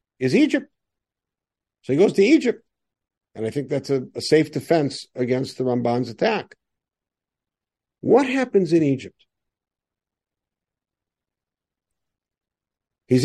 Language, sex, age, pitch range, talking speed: English, male, 60-79, 120-165 Hz, 110 wpm